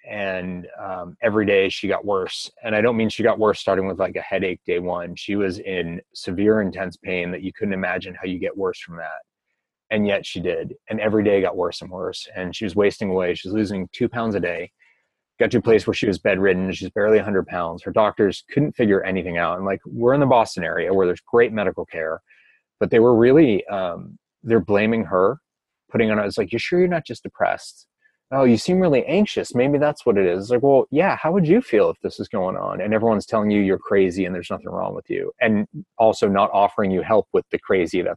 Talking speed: 240 wpm